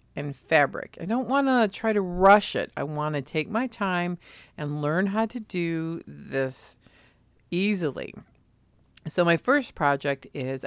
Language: English